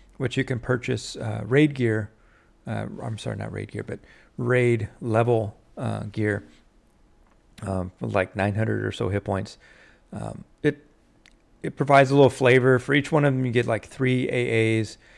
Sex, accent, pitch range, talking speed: male, American, 105-125 Hz, 165 wpm